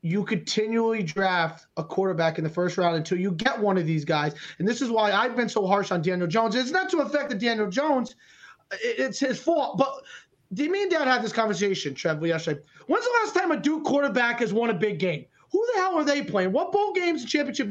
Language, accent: English, American